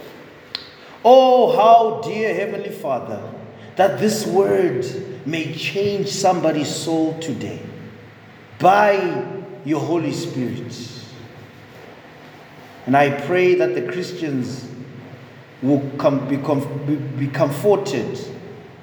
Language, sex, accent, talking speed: English, male, South African, 90 wpm